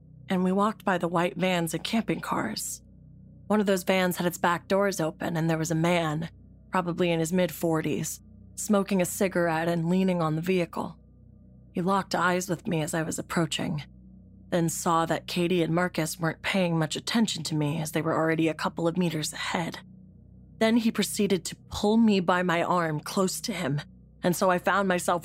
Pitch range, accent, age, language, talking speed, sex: 165-200 Hz, American, 20-39, English, 195 wpm, female